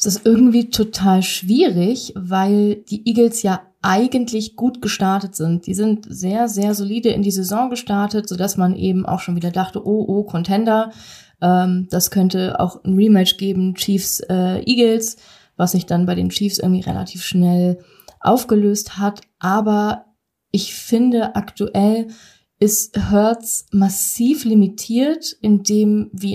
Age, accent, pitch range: 20-39, German, 185-215 Hz